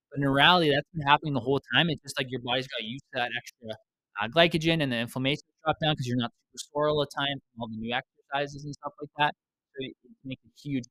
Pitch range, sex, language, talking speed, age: 115-145 Hz, male, English, 270 wpm, 20-39